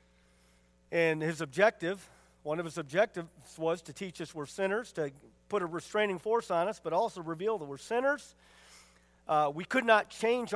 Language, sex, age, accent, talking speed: English, male, 50-69, American, 175 wpm